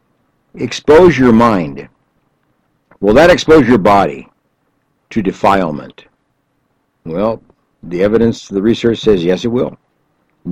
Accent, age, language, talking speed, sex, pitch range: American, 60-79, English, 115 wpm, male, 100-150 Hz